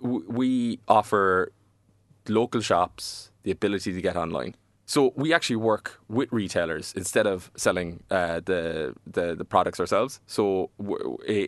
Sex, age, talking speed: male, 20-39, 135 wpm